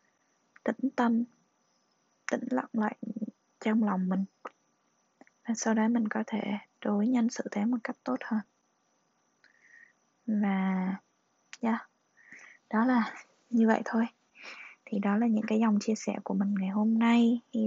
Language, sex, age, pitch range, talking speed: Vietnamese, female, 20-39, 200-235 Hz, 145 wpm